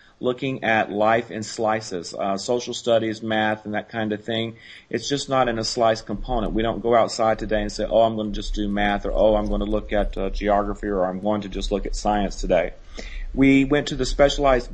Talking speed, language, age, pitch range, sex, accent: 235 wpm, English, 40-59, 105-120 Hz, male, American